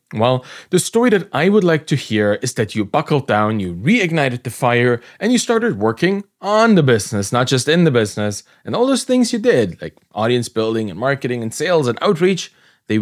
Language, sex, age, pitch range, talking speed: English, male, 30-49, 115-170 Hz, 210 wpm